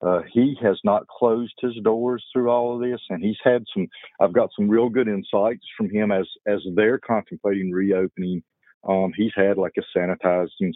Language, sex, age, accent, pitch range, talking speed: English, male, 50-69, American, 95-110 Hz, 190 wpm